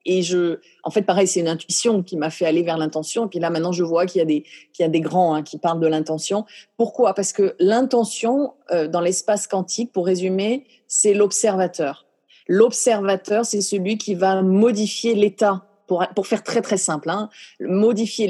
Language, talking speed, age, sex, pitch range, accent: French, 200 wpm, 30-49, female, 175-215 Hz, French